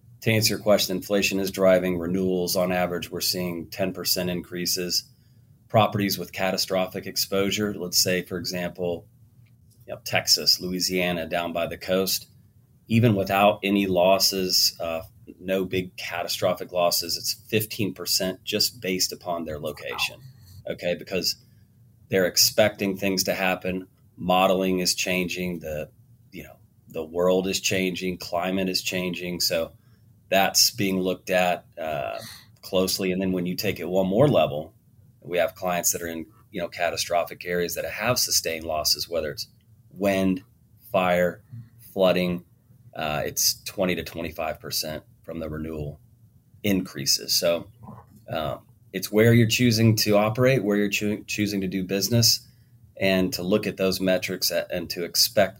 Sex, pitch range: male, 90-110 Hz